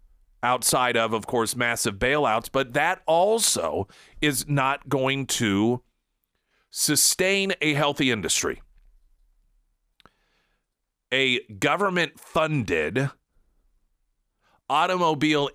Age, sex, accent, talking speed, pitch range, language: 40-59, male, American, 75 wpm, 115-150 Hz, English